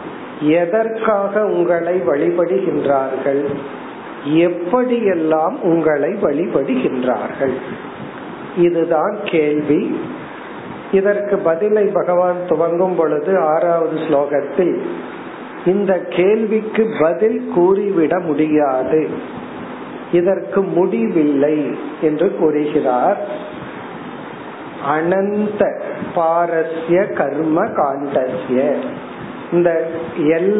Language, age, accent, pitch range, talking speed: Tamil, 50-69, native, 155-195 Hz, 45 wpm